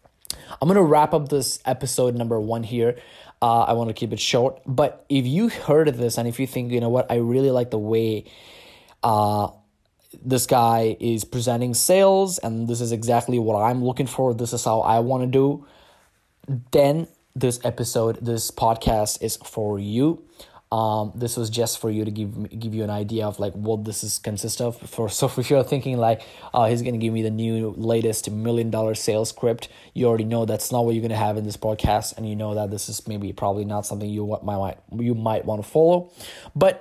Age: 20-39